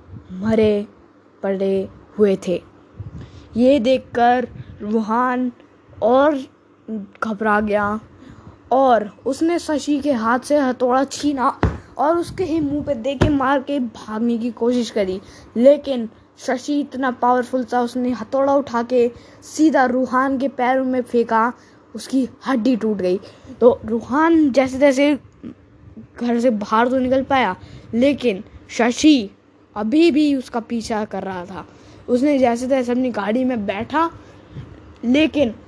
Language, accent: Hindi, native